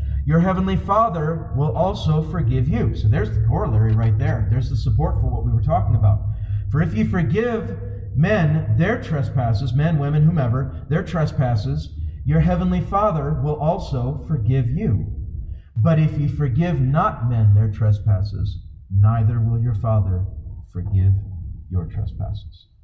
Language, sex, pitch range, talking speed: English, male, 100-130 Hz, 145 wpm